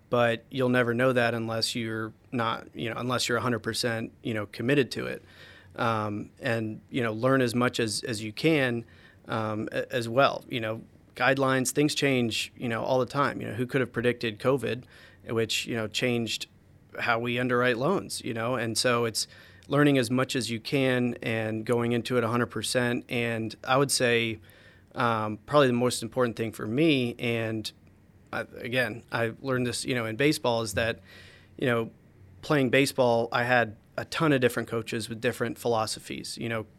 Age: 40-59